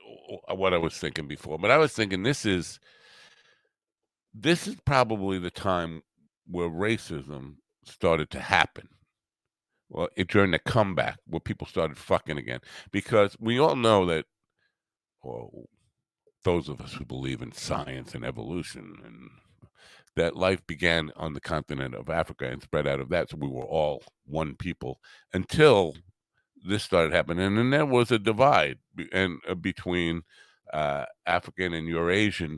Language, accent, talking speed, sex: English, American, 155 wpm, male